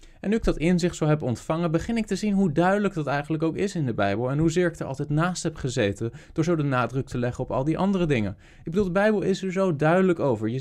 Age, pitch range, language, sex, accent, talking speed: 20-39, 120-170 Hz, Dutch, male, Dutch, 285 wpm